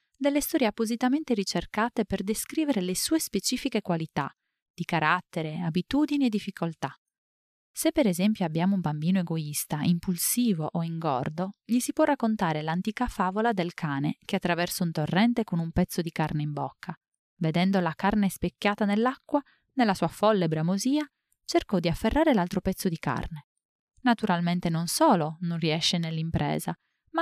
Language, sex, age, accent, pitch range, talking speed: Italian, female, 30-49, native, 170-235 Hz, 150 wpm